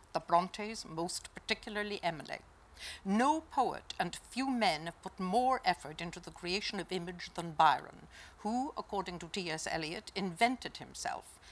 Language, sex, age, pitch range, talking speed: English, female, 60-79, 175-225 Hz, 145 wpm